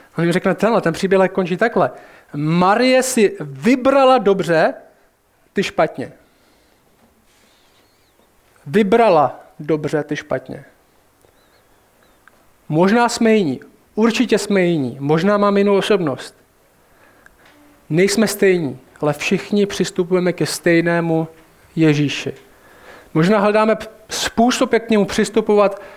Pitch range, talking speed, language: 165-210 Hz, 95 wpm, Czech